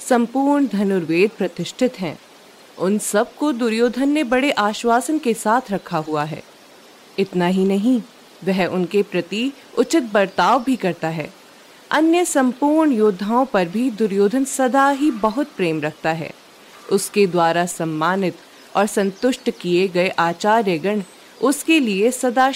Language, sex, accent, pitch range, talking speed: Hindi, female, native, 180-255 Hz, 140 wpm